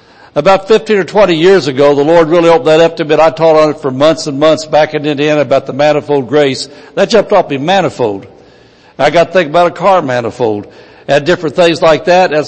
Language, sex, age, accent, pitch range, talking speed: English, male, 60-79, American, 145-180 Hz, 230 wpm